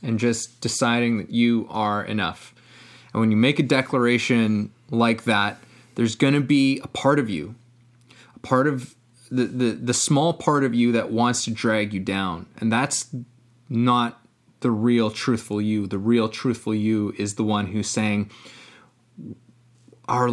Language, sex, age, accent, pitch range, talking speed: English, male, 20-39, American, 110-130 Hz, 165 wpm